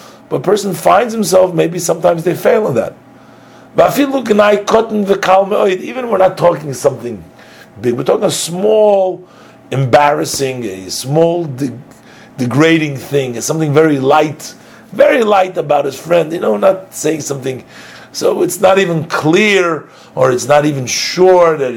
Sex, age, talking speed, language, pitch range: male, 50-69, 150 wpm, English, 145-205 Hz